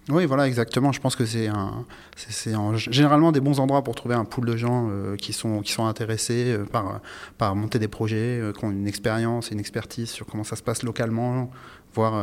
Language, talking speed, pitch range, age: French, 230 wpm, 110-130 Hz, 30-49